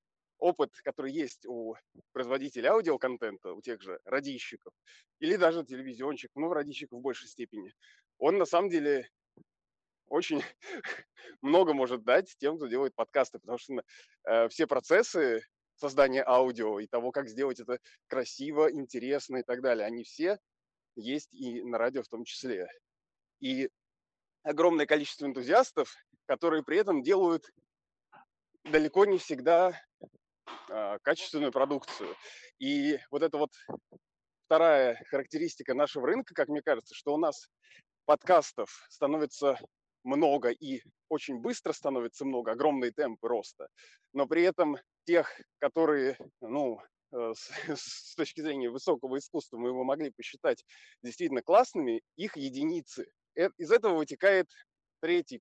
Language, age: Russian, 20-39